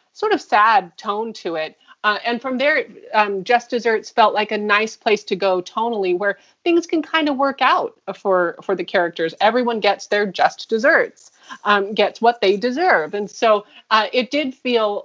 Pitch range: 185-230 Hz